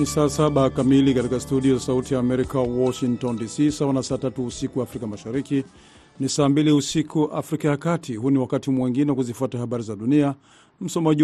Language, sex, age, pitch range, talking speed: Swahili, male, 50-69, 125-145 Hz, 140 wpm